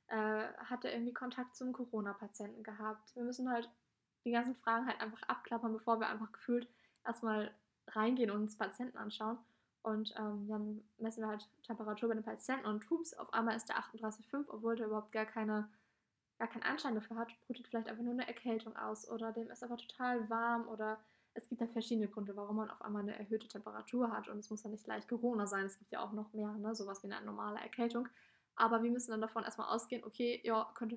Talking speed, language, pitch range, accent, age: 205 wpm, German, 215-235 Hz, German, 10-29